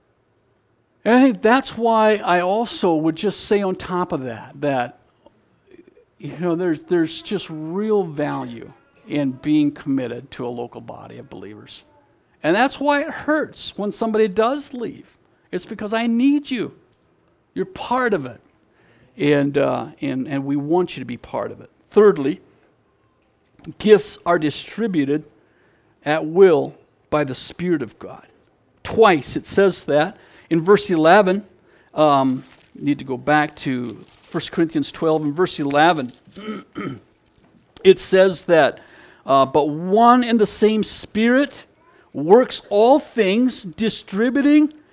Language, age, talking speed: English, 50-69, 140 wpm